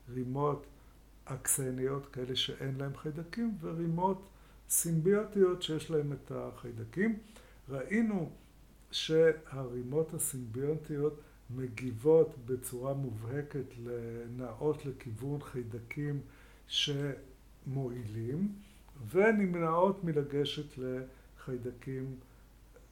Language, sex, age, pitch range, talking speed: Hebrew, male, 60-79, 125-160 Hz, 65 wpm